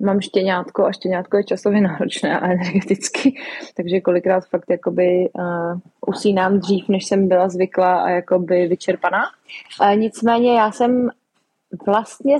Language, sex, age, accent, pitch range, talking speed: Czech, female, 20-39, native, 175-210 Hz, 115 wpm